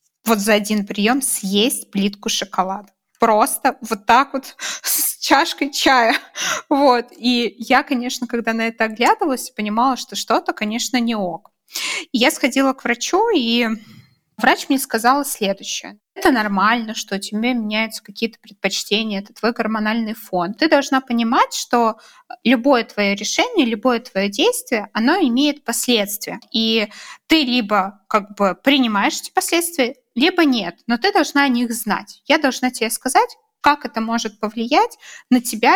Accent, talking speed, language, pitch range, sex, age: native, 150 wpm, Russian, 200-265 Hz, female, 20-39